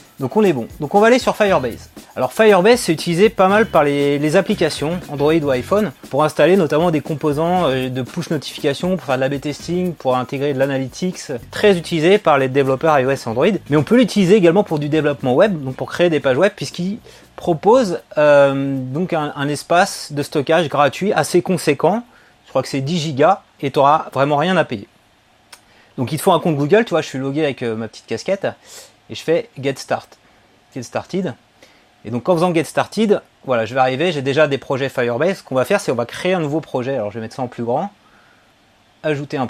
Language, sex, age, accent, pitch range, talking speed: French, male, 30-49, French, 135-180 Hz, 225 wpm